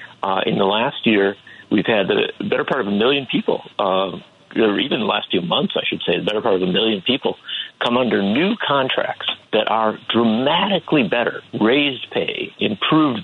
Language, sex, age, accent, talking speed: English, male, 50-69, American, 190 wpm